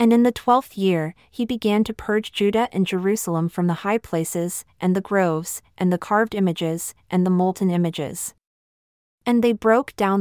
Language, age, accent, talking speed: English, 30-49, American, 180 wpm